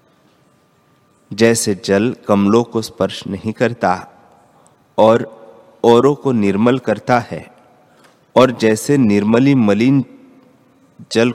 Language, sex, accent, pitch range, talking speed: Hindi, male, native, 105-135 Hz, 95 wpm